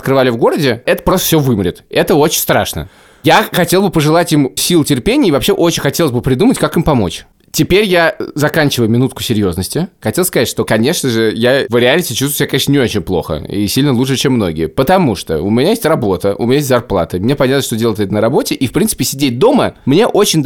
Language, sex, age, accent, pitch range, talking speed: Russian, male, 20-39, native, 120-165 Hz, 215 wpm